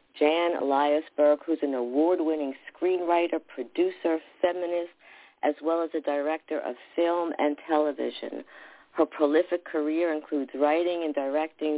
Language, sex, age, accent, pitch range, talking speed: English, female, 50-69, American, 145-170 Hz, 125 wpm